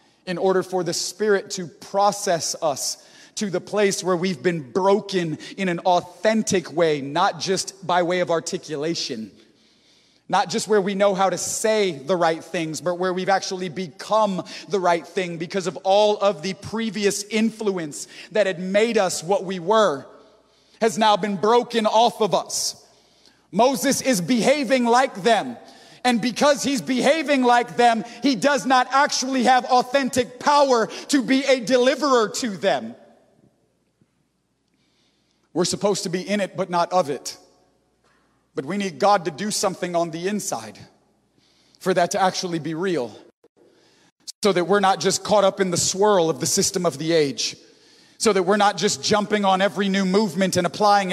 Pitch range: 180-220 Hz